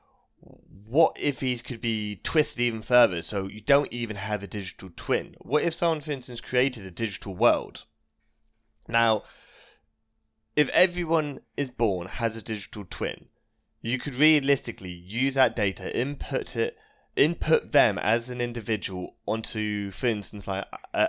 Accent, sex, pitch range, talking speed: British, male, 100-130 Hz, 145 wpm